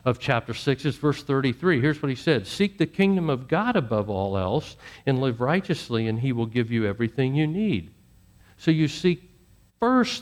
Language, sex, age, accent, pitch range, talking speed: English, male, 50-69, American, 120-180 Hz, 195 wpm